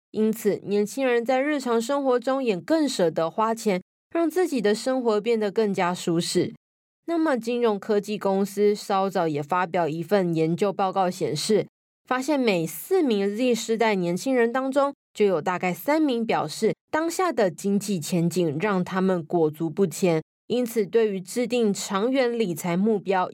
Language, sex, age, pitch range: Chinese, female, 20-39, 180-240 Hz